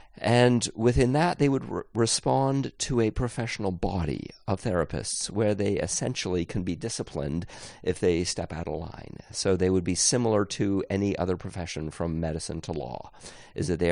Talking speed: 175 wpm